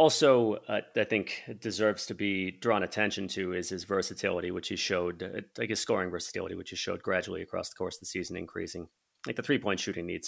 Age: 30-49